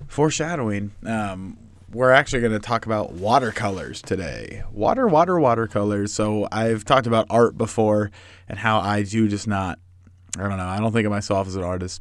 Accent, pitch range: American, 95-115 Hz